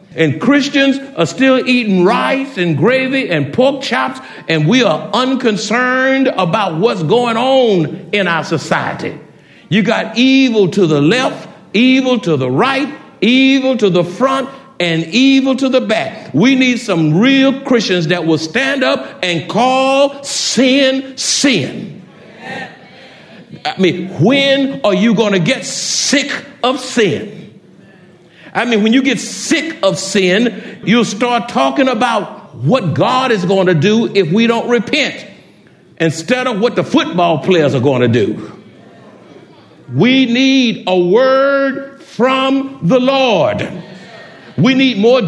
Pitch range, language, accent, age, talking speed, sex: 185-265 Hz, English, American, 60-79, 140 wpm, male